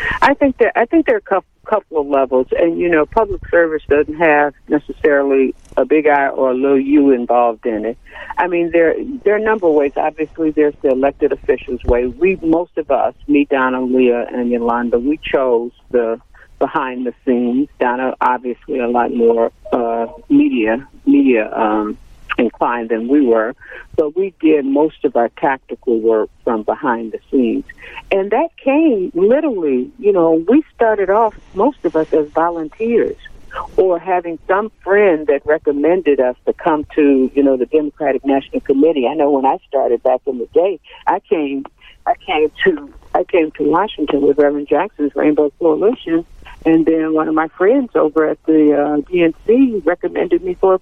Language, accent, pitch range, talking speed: English, American, 135-205 Hz, 180 wpm